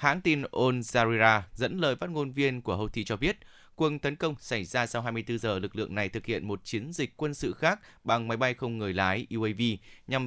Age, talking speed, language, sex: 20-39, 235 wpm, Vietnamese, male